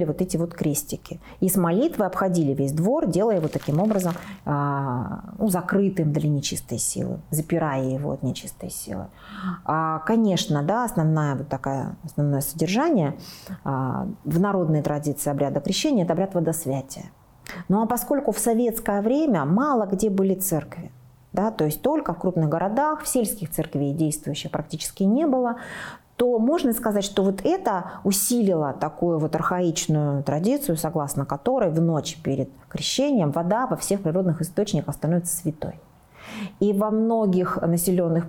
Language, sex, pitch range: Russian, female, 155-210 Hz